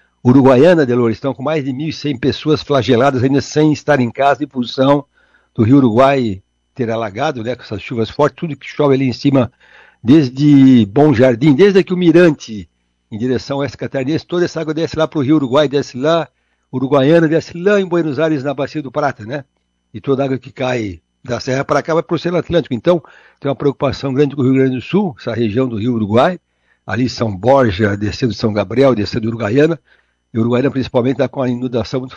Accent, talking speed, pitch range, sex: Brazilian, 210 wpm, 120-150 Hz, male